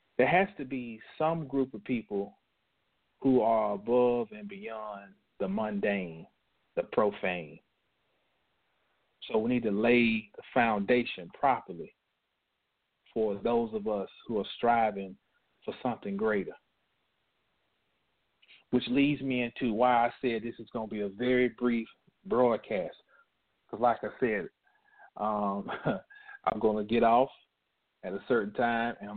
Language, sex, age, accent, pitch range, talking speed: English, male, 40-59, American, 110-145 Hz, 135 wpm